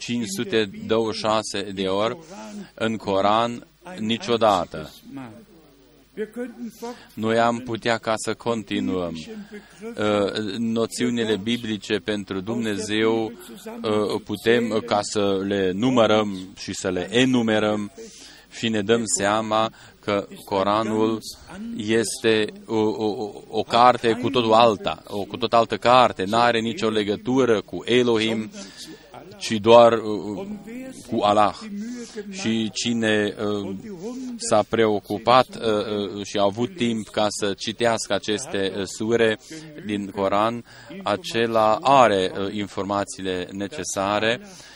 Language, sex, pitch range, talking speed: Romanian, male, 105-120 Hz, 100 wpm